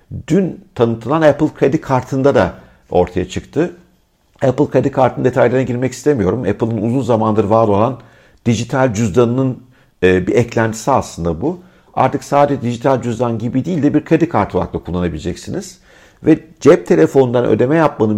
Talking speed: 140 wpm